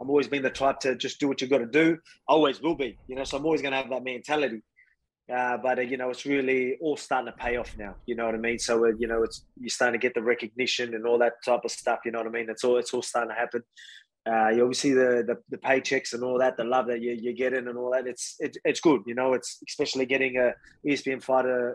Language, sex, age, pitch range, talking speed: English, male, 20-39, 120-145 Hz, 290 wpm